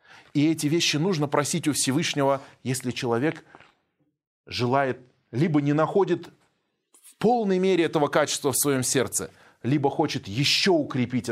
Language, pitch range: Russian, 145-210 Hz